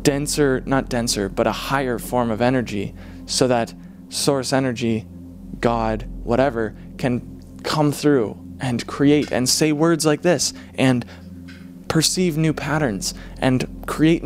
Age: 20-39